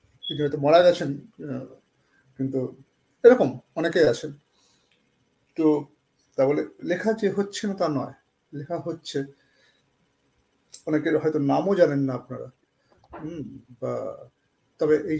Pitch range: 140-175 Hz